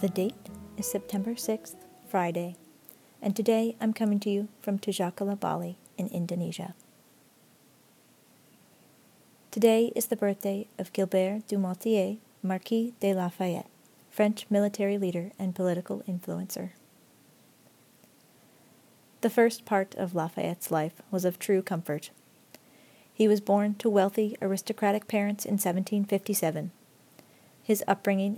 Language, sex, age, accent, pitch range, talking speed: English, female, 40-59, American, 180-210 Hz, 115 wpm